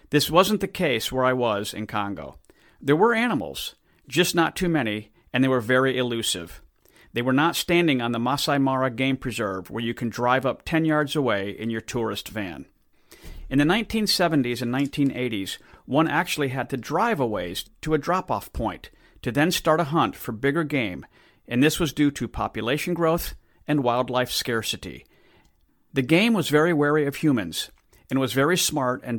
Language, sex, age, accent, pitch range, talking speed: English, male, 50-69, American, 120-165 Hz, 185 wpm